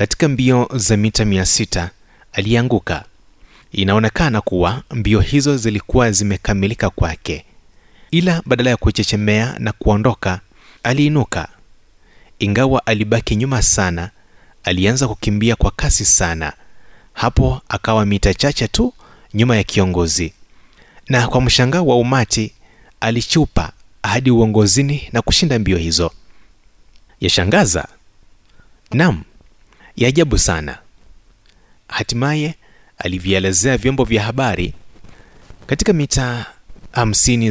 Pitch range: 95-125 Hz